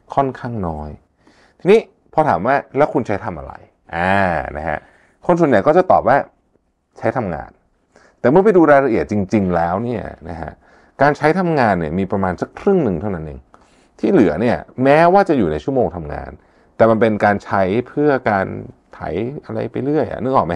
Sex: male